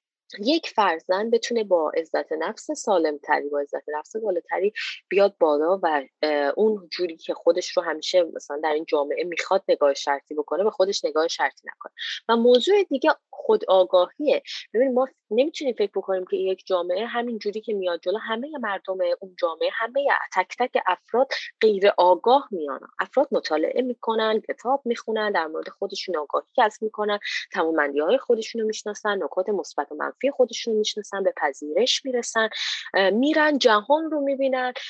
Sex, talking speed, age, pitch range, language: female, 155 wpm, 20-39, 175-255 Hz, Persian